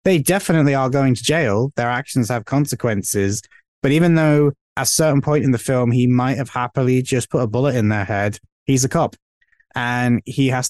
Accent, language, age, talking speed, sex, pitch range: British, English, 20-39, 210 wpm, male, 120-145 Hz